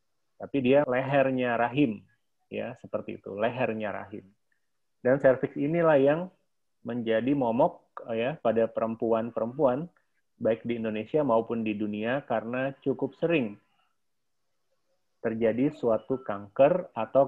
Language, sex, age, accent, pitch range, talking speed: Indonesian, male, 30-49, native, 110-140 Hz, 110 wpm